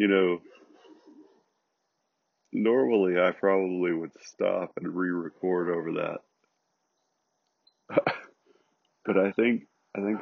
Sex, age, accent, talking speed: male, 40-59, American, 95 wpm